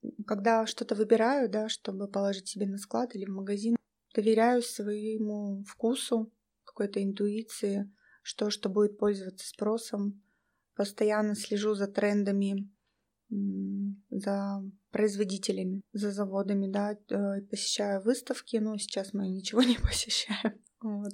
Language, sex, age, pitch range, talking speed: Russian, female, 20-39, 200-225 Hz, 110 wpm